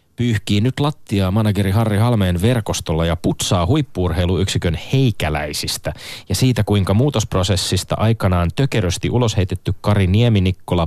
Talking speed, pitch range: 125 wpm, 90-120 Hz